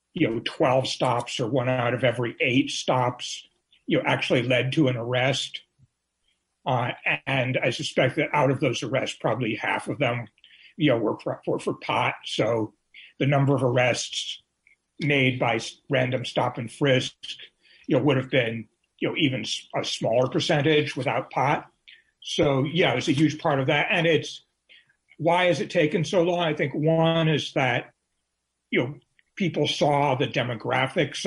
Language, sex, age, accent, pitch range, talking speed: English, male, 60-79, American, 125-155 Hz, 175 wpm